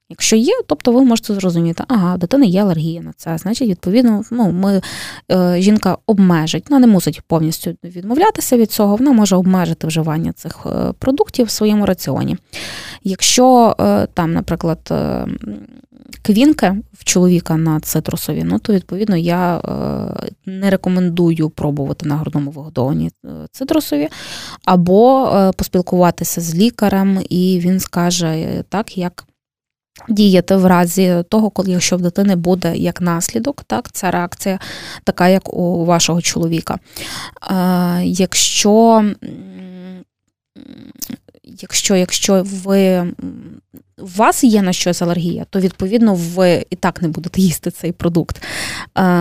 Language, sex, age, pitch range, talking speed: Ukrainian, female, 20-39, 175-215 Hz, 135 wpm